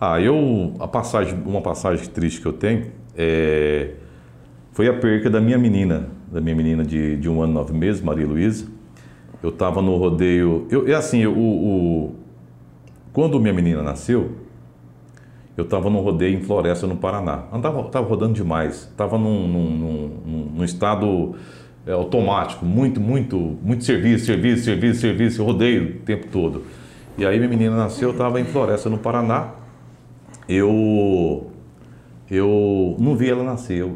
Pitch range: 75-110 Hz